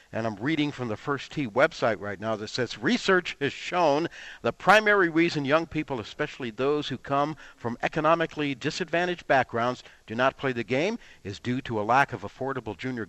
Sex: male